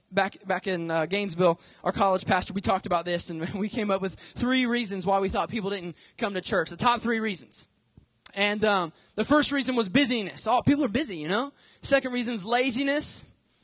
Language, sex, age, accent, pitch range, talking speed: English, male, 20-39, American, 215-265 Hz, 210 wpm